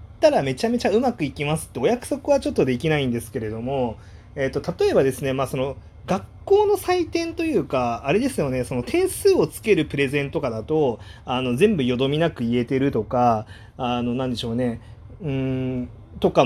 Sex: male